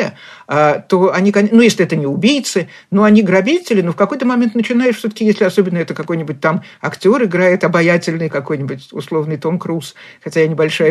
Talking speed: 180 wpm